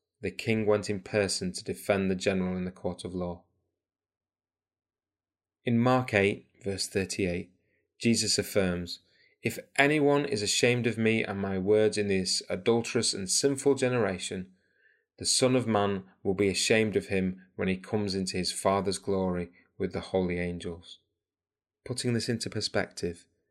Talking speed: 155 wpm